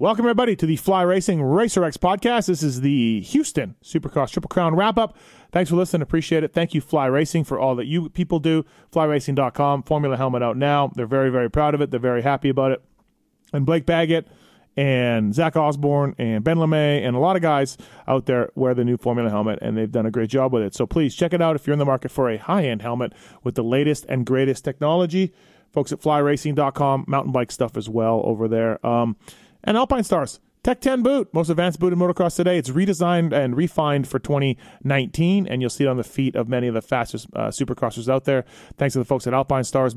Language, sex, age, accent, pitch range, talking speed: English, male, 30-49, American, 130-165 Hz, 225 wpm